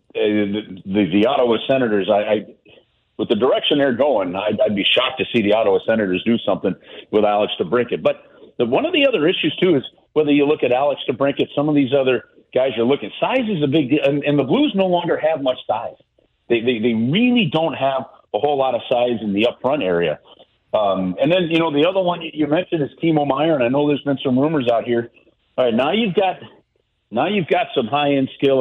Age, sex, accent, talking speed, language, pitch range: 50-69, male, American, 235 wpm, English, 125-175 Hz